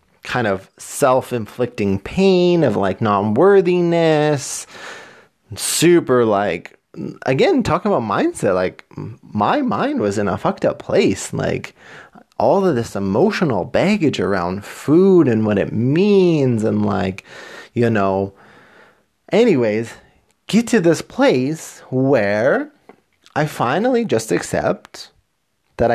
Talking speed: 115 wpm